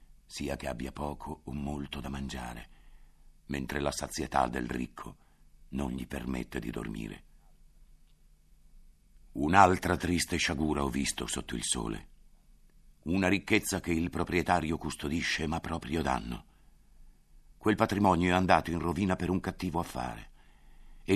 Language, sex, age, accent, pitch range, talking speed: Italian, male, 60-79, native, 70-85 Hz, 130 wpm